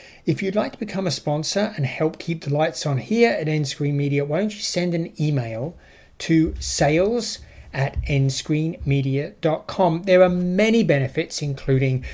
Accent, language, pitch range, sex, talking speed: British, English, 135-180 Hz, male, 160 wpm